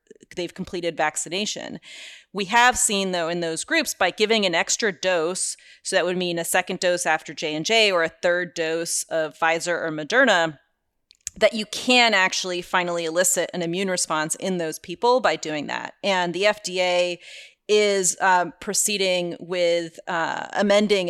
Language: English